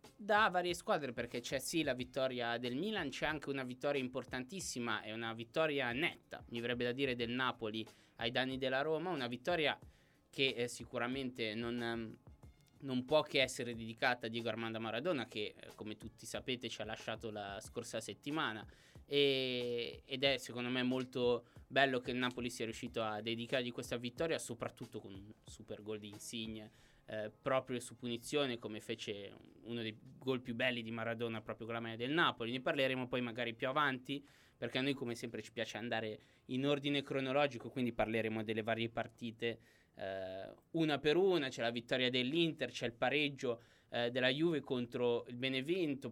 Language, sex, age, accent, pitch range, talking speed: Italian, male, 20-39, native, 115-135 Hz, 175 wpm